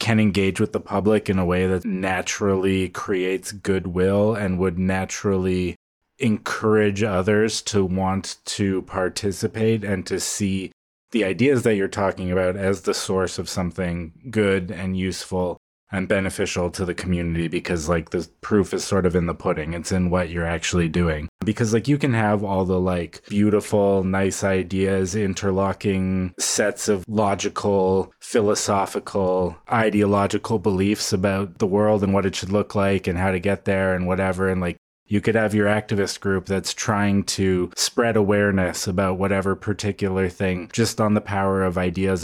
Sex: male